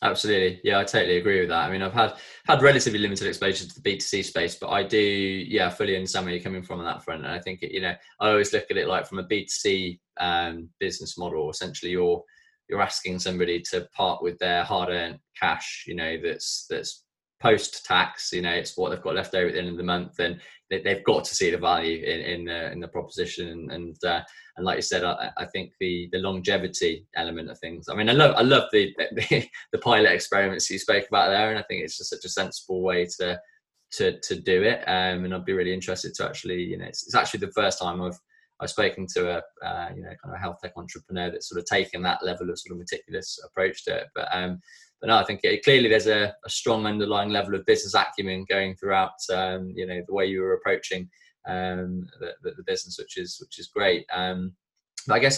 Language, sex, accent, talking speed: English, male, British, 240 wpm